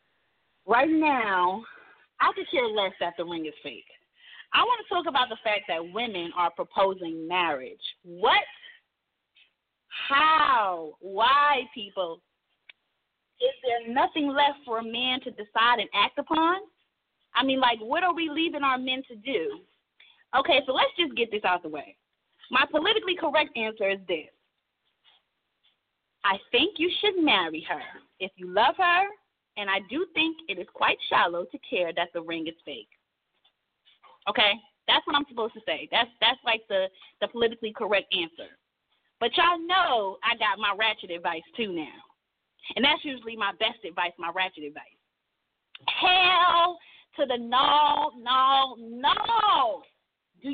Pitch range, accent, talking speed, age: 195-325 Hz, American, 155 wpm, 30-49